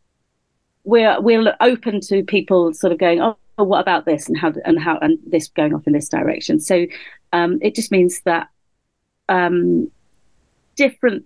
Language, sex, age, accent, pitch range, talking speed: English, female, 40-59, British, 160-245 Hz, 165 wpm